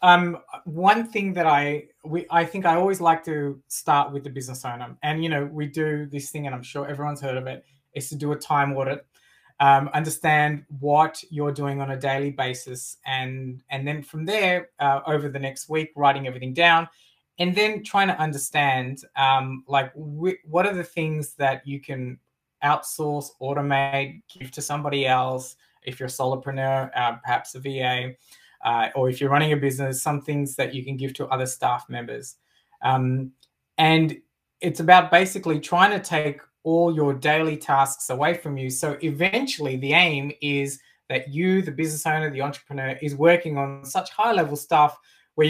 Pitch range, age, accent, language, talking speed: 135-160 Hz, 20-39, Australian, English, 185 wpm